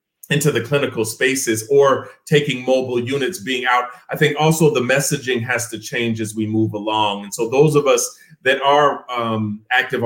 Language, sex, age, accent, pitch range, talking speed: English, male, 30-49, American, 115-145 Hz, 185 wpm